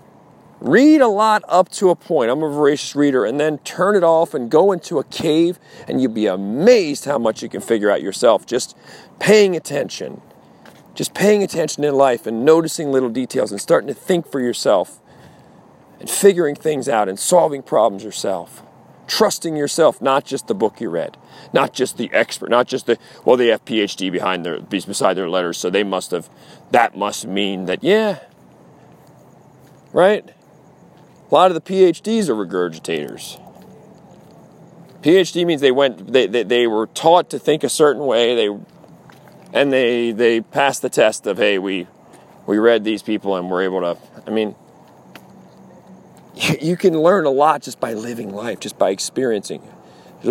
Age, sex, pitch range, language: 40-59, male, 115-170 Hz, English